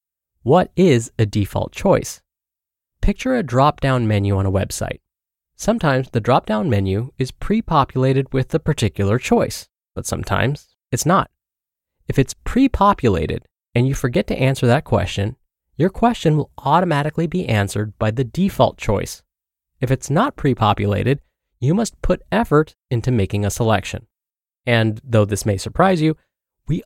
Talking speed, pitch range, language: 155 wpm, 105-150 Hz, English